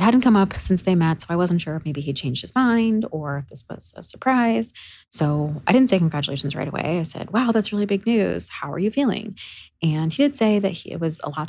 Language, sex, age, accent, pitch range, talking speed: English, female, 20-39, American, 150-185 Hz, 265 wpm